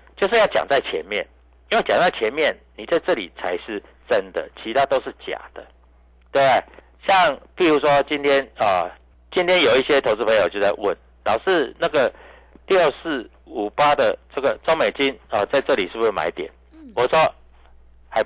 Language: Chinese